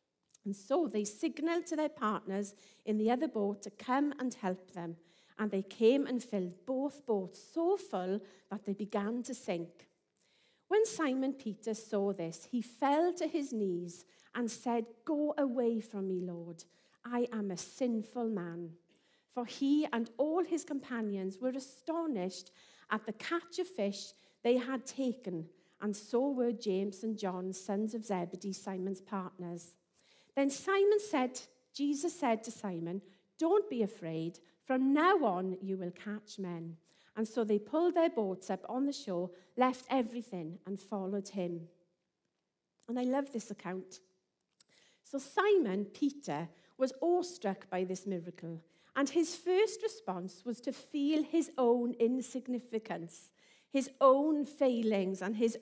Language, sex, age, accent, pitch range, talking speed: English, female, 40-59, British, 185-270 Hz, 150 wpm